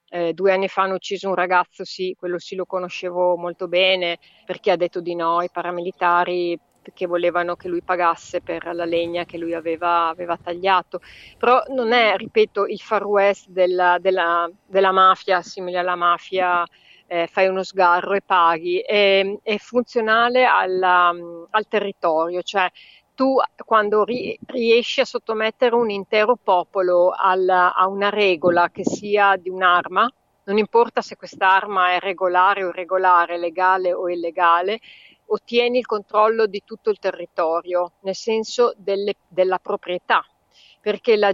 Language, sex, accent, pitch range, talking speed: Italian, female, native, 175-210 Hz, 145 wpm